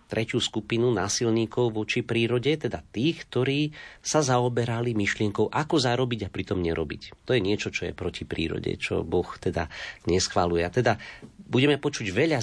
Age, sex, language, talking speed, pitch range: 40-59, male, Slovak, 150 wpm, 95-120 Hz